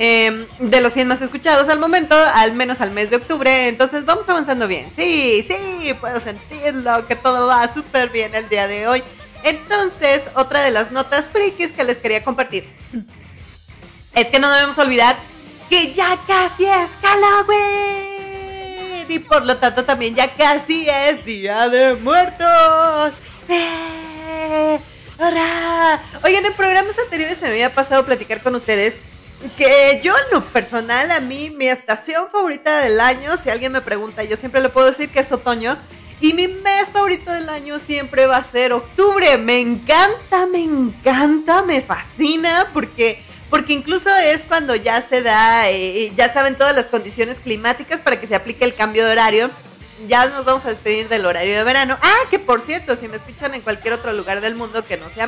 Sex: female